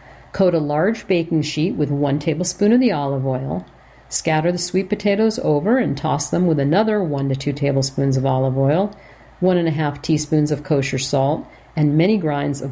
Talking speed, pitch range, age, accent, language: 195 wpm, 145-190 Hz, 50-69, American, English